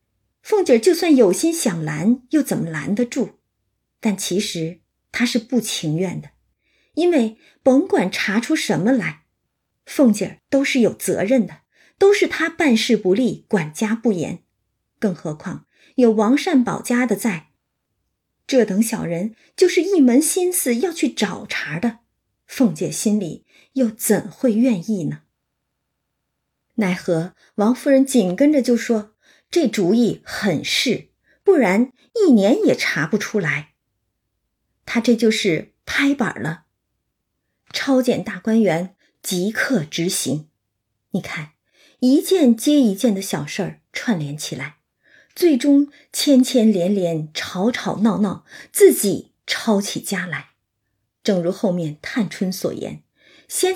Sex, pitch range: female, 190-270 Hz